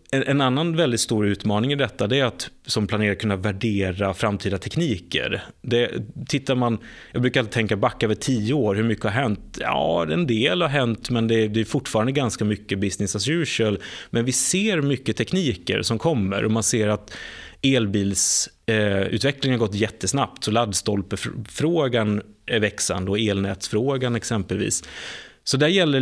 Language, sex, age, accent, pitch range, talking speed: Swedish, male, 30-49, native, 110-135 Hz, 165 wpm